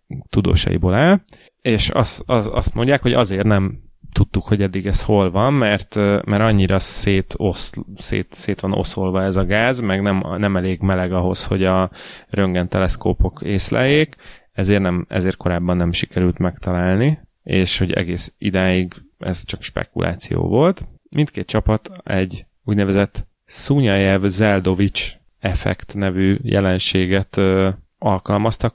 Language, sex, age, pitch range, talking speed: Hungarian, male, 30-49, 95-105 Hz, 130 wpm